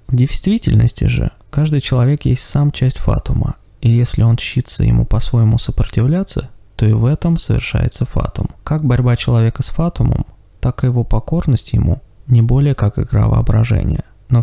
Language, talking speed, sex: Russian, 160 wpm, male